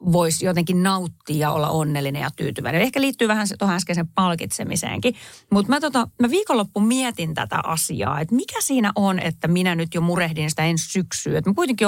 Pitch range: 155-210 Hz